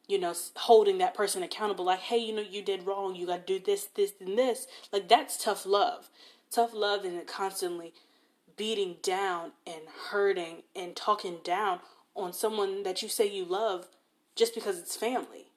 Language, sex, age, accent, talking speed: English, female, 20-39, American, 185 wpm